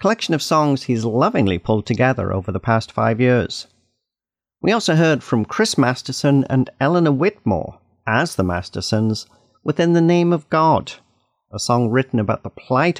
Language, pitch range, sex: English, 110-145 Hz, male